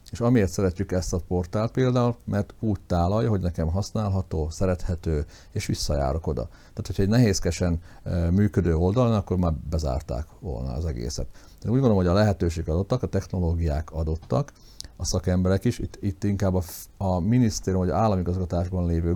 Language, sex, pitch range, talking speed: Hungarian, male, 85-95 Hz, 165 wpm